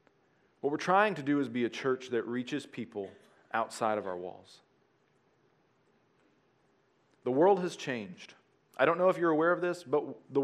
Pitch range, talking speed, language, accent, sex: 120-160 Hz, 170 wpm, English, American, male